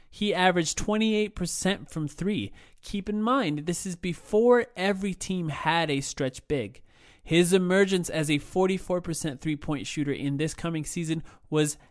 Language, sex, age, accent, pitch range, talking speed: English, male, 30-49, American, 135-185 Hz, 145 wpm